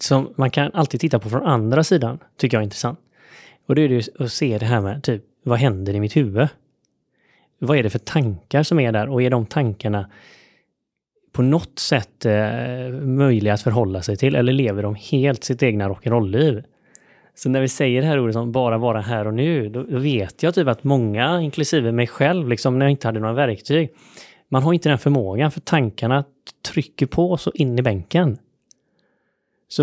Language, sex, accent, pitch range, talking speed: Swedish, male, native, 115-150 Hz, 205 wpm